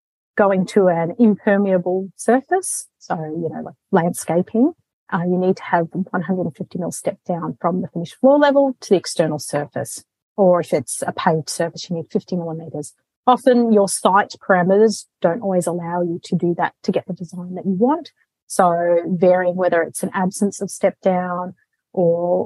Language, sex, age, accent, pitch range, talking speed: English, female, 30-49, Australian, 170-205 Hz, 175 wpm